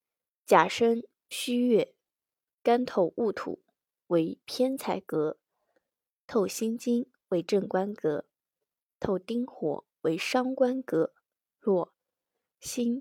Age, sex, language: 20-39, female, Chinese